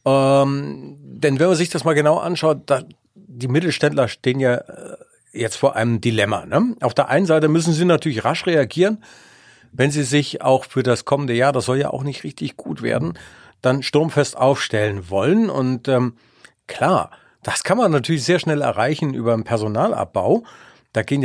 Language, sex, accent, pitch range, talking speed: German, male, German, 115-150 Hz, 170 wpm